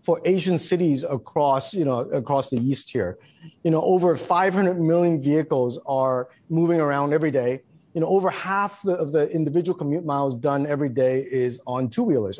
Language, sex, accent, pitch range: Chinese, male, American, 135-170 Hz